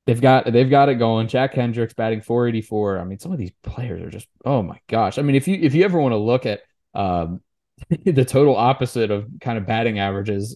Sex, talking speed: male, 235 wpm